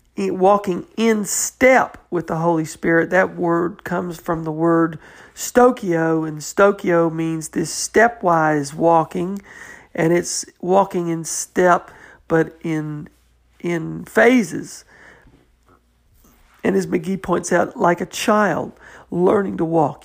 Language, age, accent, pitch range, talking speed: English, 50-69, American, 155-190 Hz, 120 wpm